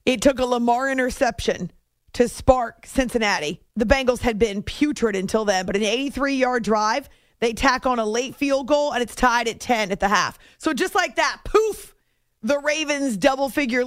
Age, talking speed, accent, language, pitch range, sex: 40-59, 180 wpm, American, English, 225-305 Hz, female